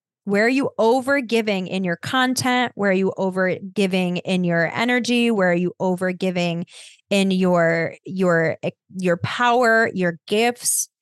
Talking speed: 150 wpm